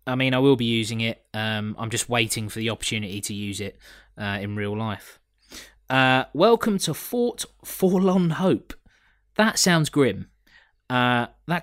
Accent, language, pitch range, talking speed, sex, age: British, English, 110-140 Hz, 165 wpm, male, 20-39